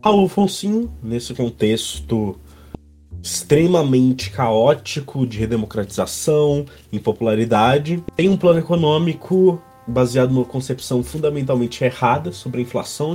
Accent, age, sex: Brazilian, 20-39, male